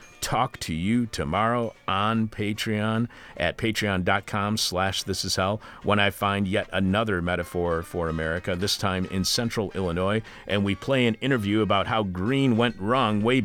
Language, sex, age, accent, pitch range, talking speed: English, male, 40-59, American, 95-110 Hz, 150 wpm